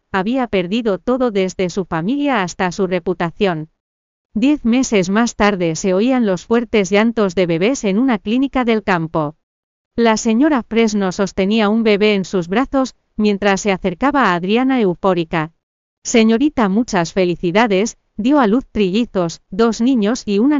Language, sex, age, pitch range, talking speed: Spanish, female, 40-59, 190-235 Hz, 150 wpm